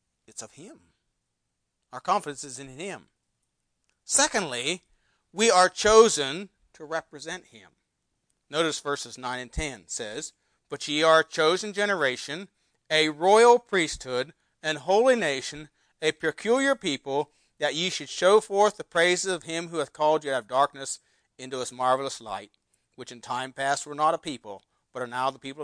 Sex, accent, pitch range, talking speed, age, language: male, American, 130-175 Hz, 160 wpm, 40-59, English